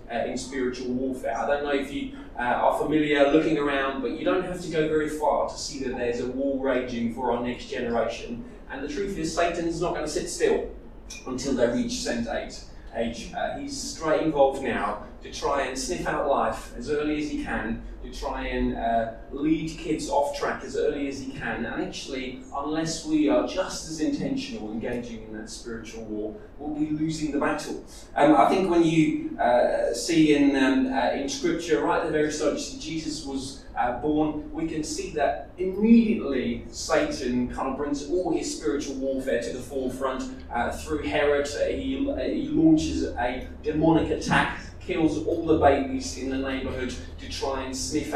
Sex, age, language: male, 20-39, English